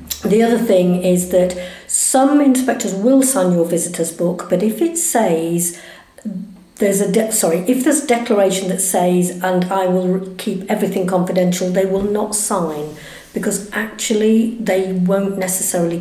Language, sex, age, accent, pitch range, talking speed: English, female, 50-69, British, 170-205 Hz, 150 wpm